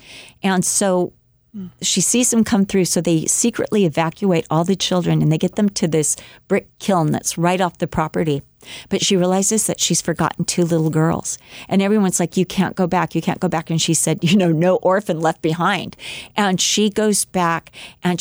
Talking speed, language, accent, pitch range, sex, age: 200 wpm, English, American, 165-195 Hz, female, 40-59